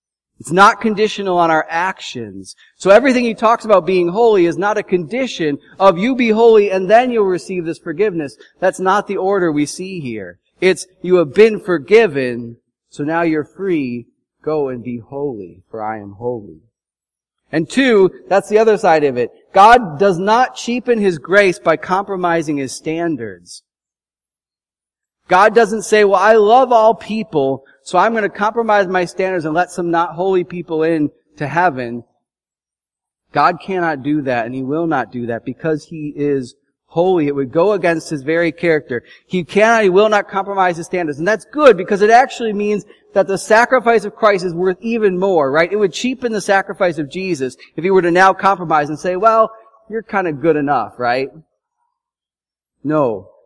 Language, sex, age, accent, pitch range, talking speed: English, male, 30-49, American, 150-210 Hz, 180 wpm